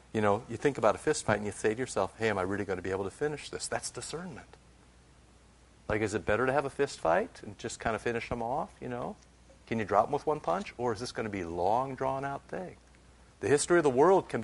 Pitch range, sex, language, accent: 85-105 Hz, male, English, American